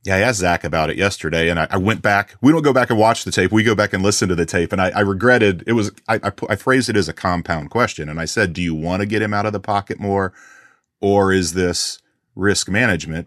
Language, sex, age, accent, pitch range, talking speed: English, male, 30-49, American, 85-105 Hz, 280 wpm